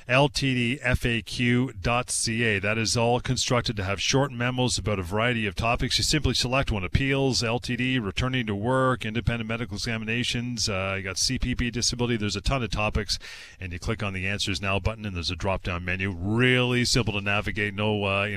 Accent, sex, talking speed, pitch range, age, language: American, male, 185 wpm, 100-125 Hz, 40-59, English